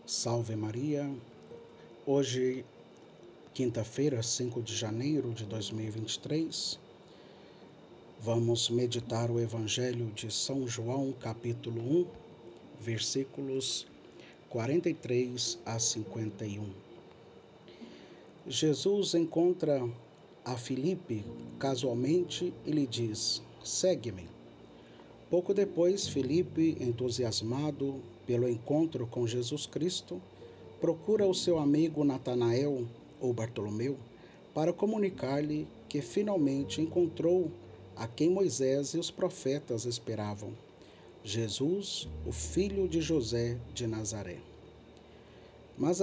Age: 50-69